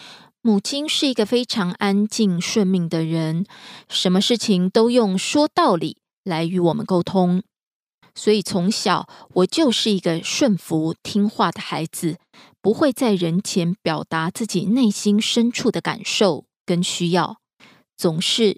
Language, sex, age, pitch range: Korean, female, 20-39, 175-225 Hz